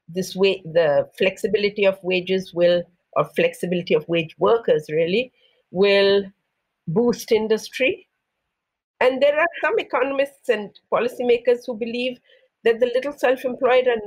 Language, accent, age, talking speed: English, Indian, 50-69, 130 wpm